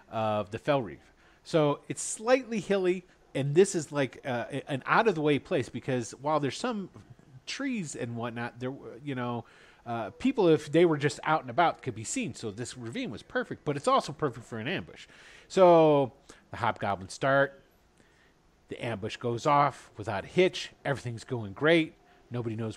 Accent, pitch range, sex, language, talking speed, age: American, 120-165 Hz, male, English, 170 wpm, 40-59